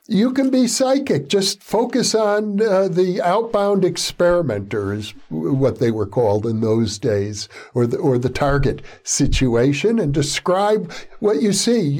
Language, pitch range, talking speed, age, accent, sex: English, 135-195 Hz, 145 wpm, 60-79, American, male